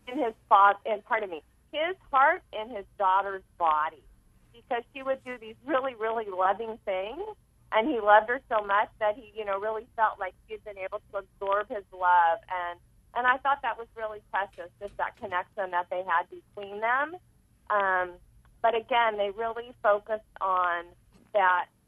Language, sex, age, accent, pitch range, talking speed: English, female, 40-59, American, 190-245 Hz, 180 wpm